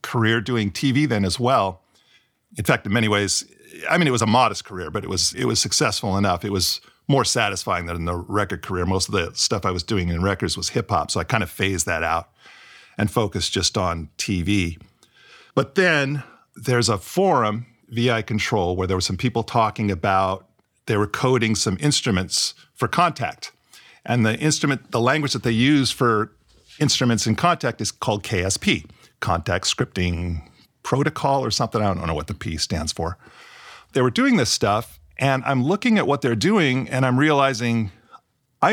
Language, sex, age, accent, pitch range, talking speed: English, male, 50-69, American, 95-130 Hz, 190 wpm